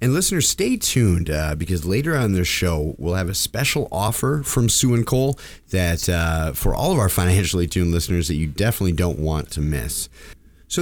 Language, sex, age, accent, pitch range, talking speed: English, male, 30-49, American, 85-110 Hz, 200 wpm